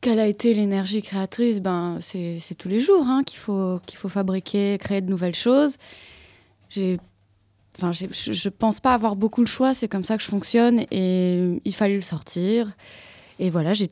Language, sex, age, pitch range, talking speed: French, female, 20-39, 180-215 Hz, 200 wpm